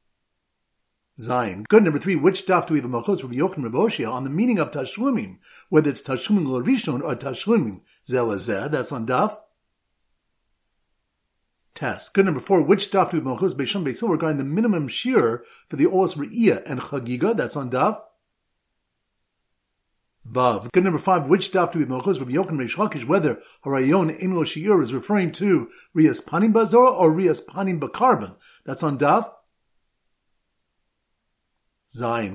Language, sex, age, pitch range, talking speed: English, male, 50-69, 125-185 Hz, 145 wpm